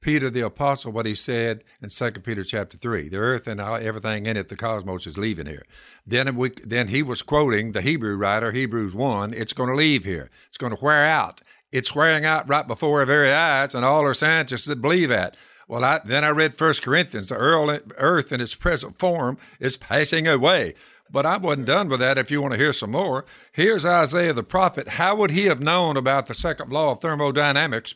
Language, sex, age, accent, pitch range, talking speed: English, male, 60-79, American, 115-165 Hz, 220 wpm